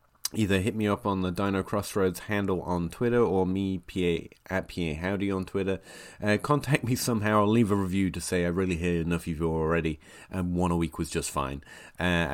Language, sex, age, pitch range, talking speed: English, male, 30-49, 90-115 Hz, 210 wpm